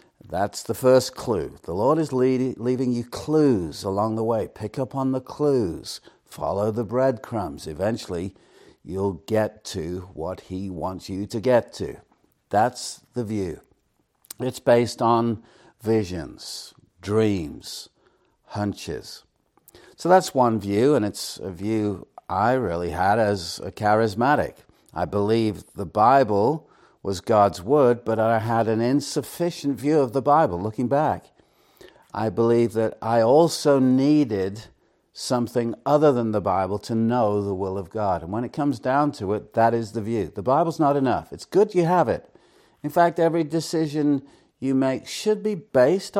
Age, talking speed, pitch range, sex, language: 60-79, 155 wpm, 105-140 Hz, male, English